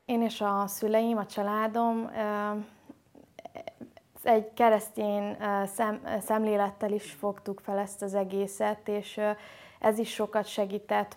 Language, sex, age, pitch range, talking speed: Hungarian, female, 20-39, 200-220 Hz, 115 wpm